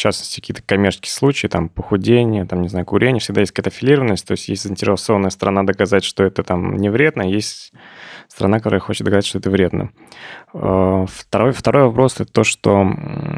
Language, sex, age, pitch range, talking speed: Russian, male, 20-39, 95-115 Hz, 180 wpm